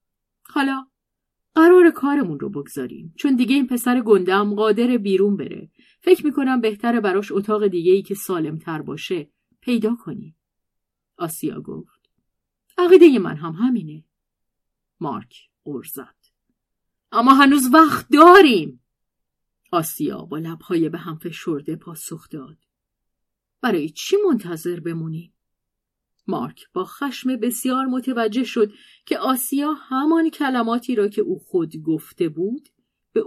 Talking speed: 120 wpm